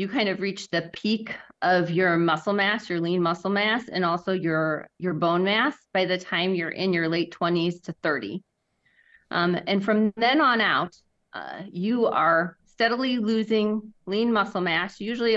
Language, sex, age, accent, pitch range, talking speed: English, female, 30-49, American, 175-210 Hz, 175 wpm